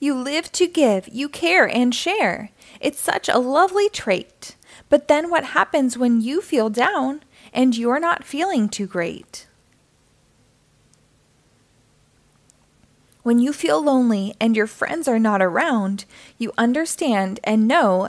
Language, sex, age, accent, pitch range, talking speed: English, female, 20-39, American, 205-285 Hz, 135 wpm